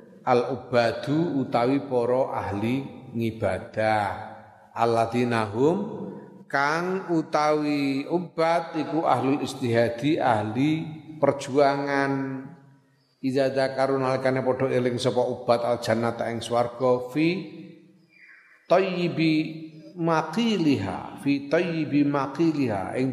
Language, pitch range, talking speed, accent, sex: Indonesian, 120-155 Hz, 75 wpm, native, male